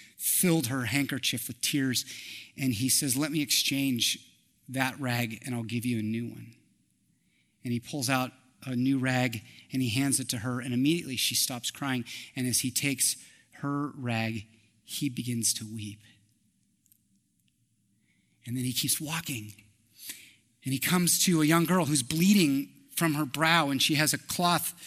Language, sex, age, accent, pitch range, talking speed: English, male, 30-49, American, 120-145 Hz, 170 wpm